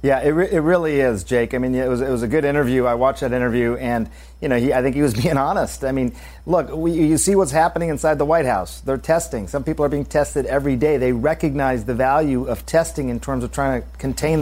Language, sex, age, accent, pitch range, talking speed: English, male, 40-59, American, 125-150 Hz, 260 wpm